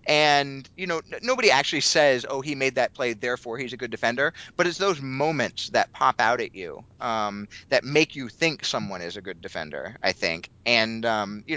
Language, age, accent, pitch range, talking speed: English, 30-49, American, 105-135 Hz, 215 wpm